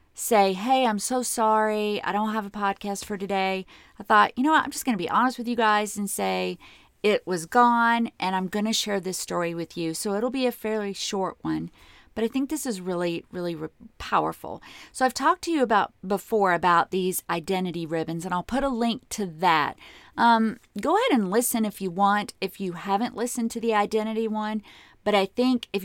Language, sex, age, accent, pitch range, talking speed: English, female, 40-59, American, 175-220 Hz, 220 wpm